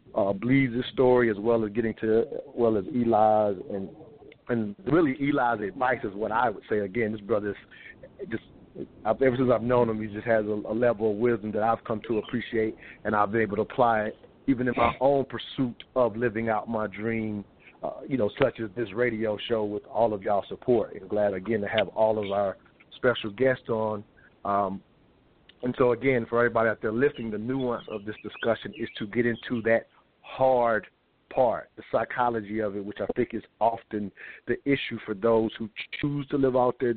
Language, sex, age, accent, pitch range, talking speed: English, male, 40-59, American, 110-125 Hz, 200 wpm